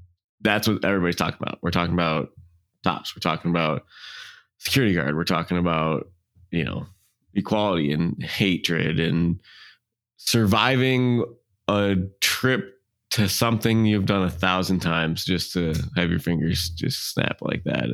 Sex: male